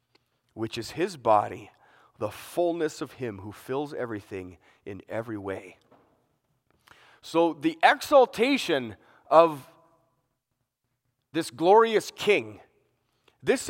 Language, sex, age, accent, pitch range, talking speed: English, male, 30-49, American, 120-200 Hz, 95 wpm